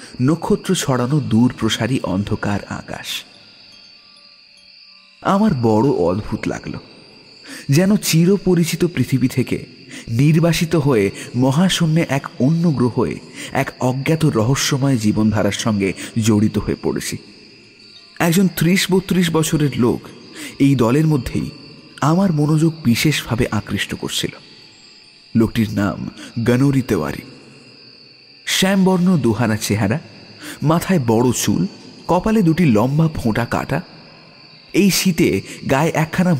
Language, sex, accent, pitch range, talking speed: Bengali, male, native, 115-170 Hz, 90 wpm